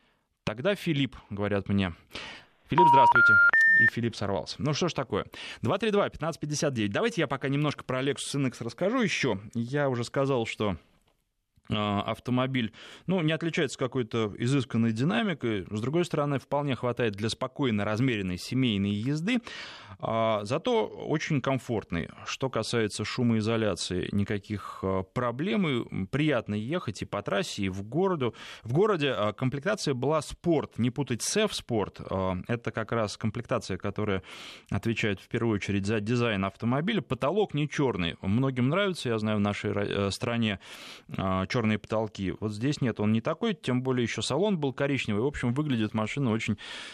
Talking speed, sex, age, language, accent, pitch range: 140 wpm, male, 20-39, Russian, native, 105-145 Hz